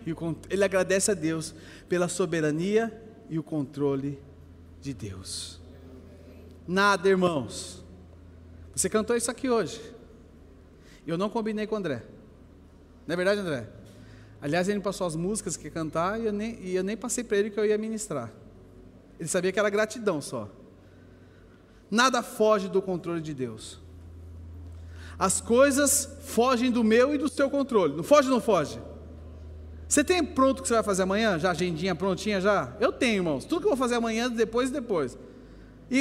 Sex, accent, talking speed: male, Brazilian, 165 wpm